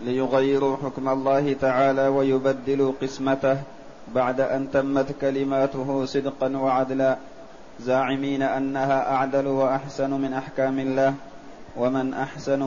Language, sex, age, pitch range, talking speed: Arabic, male, 30-49, 130-135 Hz, 100 wpm